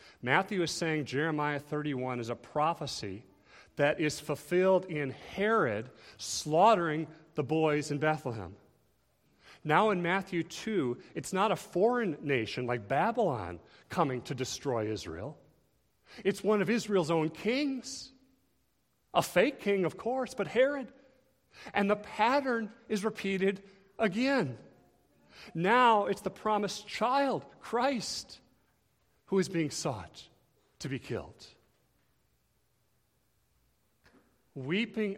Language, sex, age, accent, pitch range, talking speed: English, male, 40-59, American, 145-210 Hz, 115 wpm